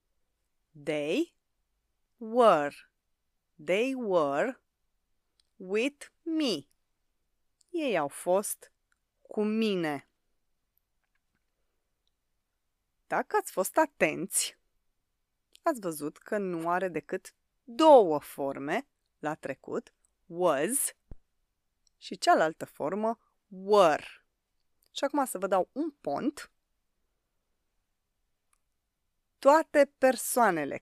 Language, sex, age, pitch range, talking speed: Romanian, female, 30-49, 165-270 Hz, 75 wpm